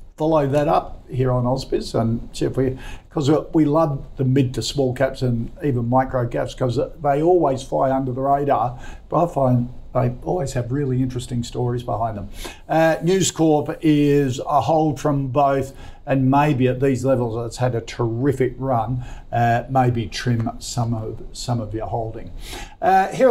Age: 50-69